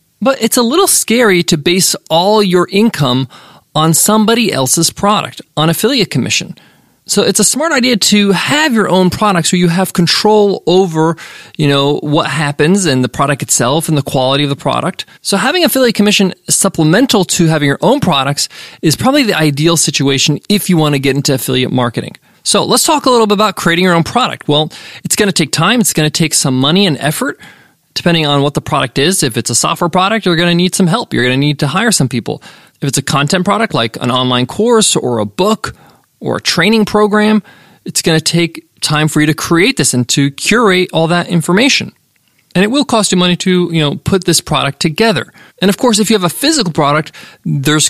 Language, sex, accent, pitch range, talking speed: English, male, American, 150-205 Hz, 215 wpm